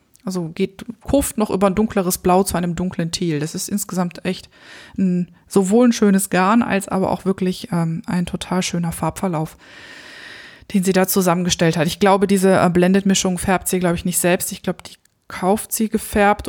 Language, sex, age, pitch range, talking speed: German, female, 20-39, 175-200 Hz, 190 wpm